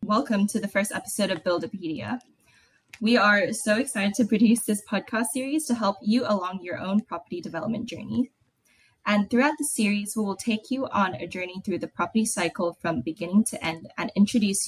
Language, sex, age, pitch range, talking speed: English, female, 20-39, 175-225 Hz, 190 wpm